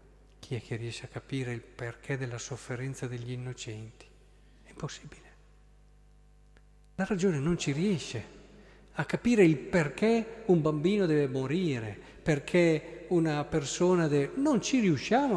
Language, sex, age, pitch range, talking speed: Italian, male, 50-69, 125-160 Hz, 135 wpm